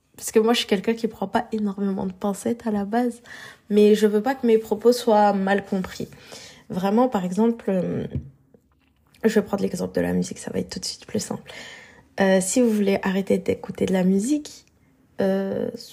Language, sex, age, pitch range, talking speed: French, female, 20-39, 190-230 Hz, 205 wpm